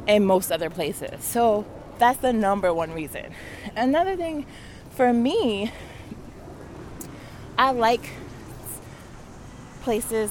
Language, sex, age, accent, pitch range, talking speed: English, female, 20-39, American, 175-210 Hz, 100 wpm